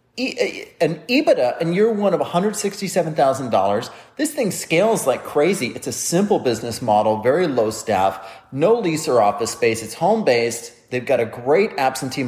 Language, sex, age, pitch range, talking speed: English, male, 30-49, 120-150 Hz, 155 wpm